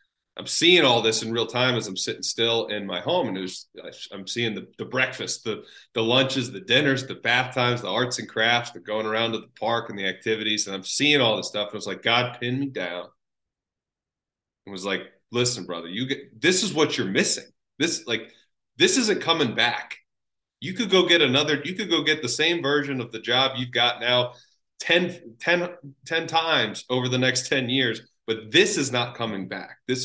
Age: 30-49